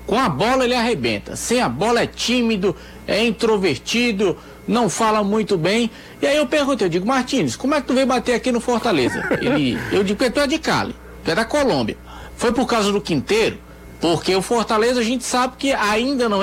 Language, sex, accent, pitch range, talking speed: Portuguese, male, Brazilian, 165-235 Hz, 210 wpm